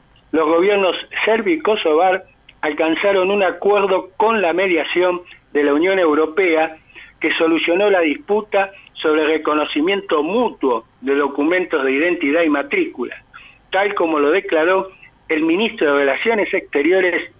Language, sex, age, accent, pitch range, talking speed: Spanish, male, 60-79, Argentinian, 150-205 Hz, 130 wpm